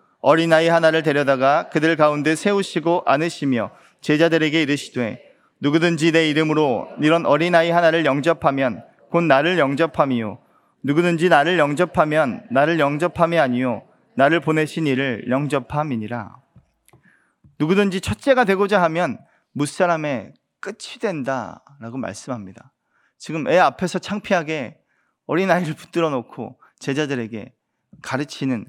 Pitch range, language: 135-180 Hz, Korean